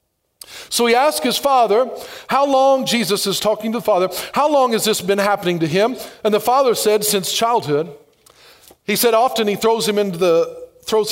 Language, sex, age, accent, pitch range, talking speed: English, male, 50-69, American, 205-260 Hz, 195 wpm